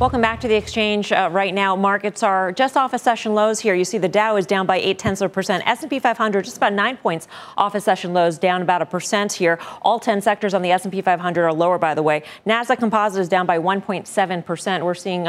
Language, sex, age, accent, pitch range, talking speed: English, female, 40-59, American, 180-220 Hz, 245 wpm